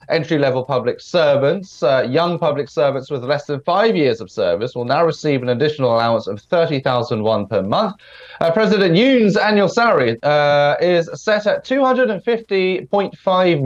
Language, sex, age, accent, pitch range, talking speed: English, male, 30-49, British, 125-175 Hz, 160 wpm